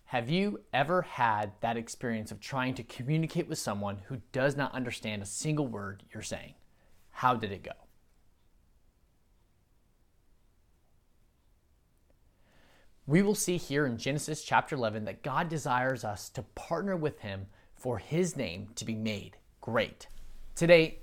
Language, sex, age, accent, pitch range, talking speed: English, male, 30-49, American, 110-160 Hz, 140 wpm